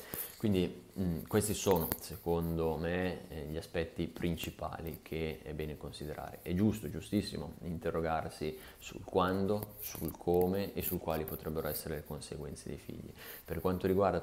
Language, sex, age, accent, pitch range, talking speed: Italian, male, 30-49, native, 80-95 Hz, 135 wpm